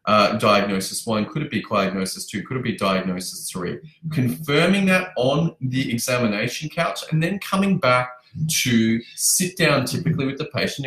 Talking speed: 165 wpm